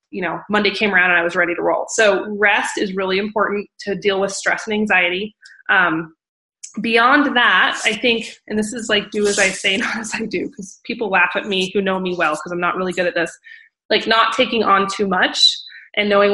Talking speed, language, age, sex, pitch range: 230 wpm, English, 20-39, female, 190-225 Hz